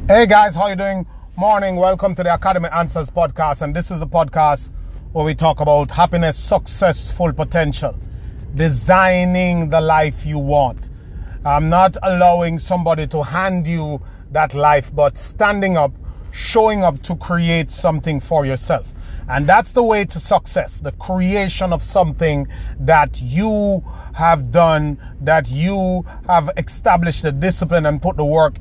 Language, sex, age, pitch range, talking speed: English, male, 30-49, 130-175 Hz, 155 wpm